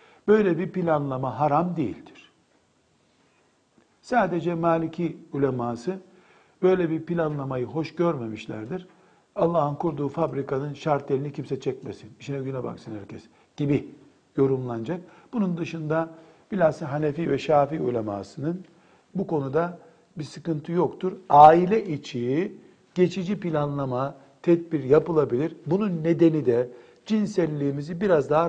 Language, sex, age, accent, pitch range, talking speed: Turkish, male, 60-79, native, 140-180 Hz, 105 wpm